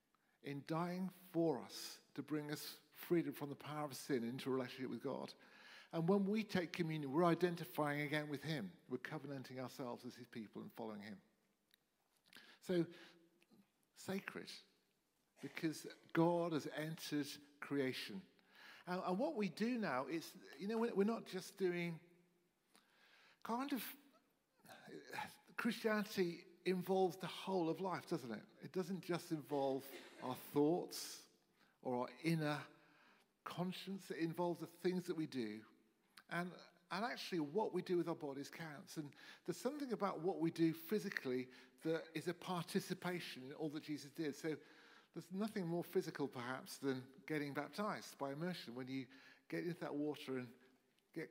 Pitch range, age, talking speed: 145-185 Hz, 50-69, 150 wpm